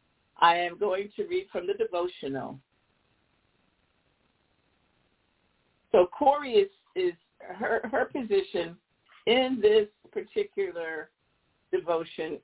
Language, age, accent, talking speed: English, 50-69, American, 90 wpm